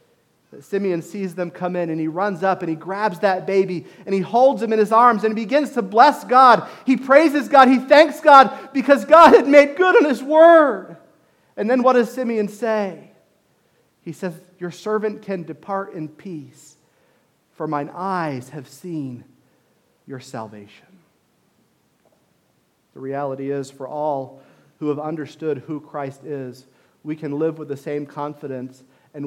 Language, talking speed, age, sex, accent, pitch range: English, 165 wpm, 40-59, male, American, 160-270 Hz